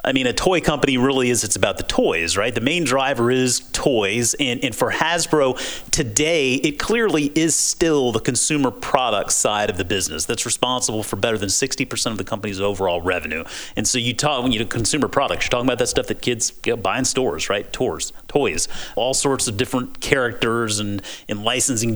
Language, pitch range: English, 110-135 Hz